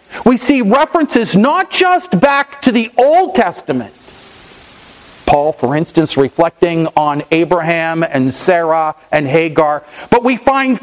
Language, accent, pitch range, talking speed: English, American, 160-240 Hz, 125 wpm